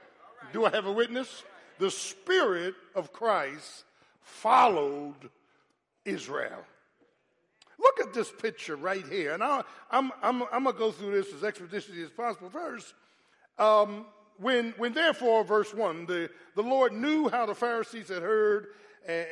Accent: American